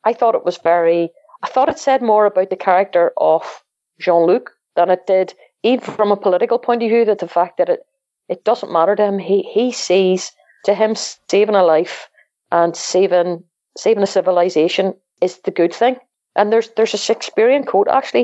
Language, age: English, 30-49